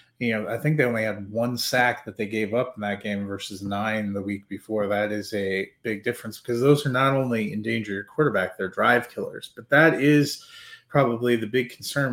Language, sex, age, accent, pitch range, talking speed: English, male, 30-49, American, 105-130 Hz, 225 wpm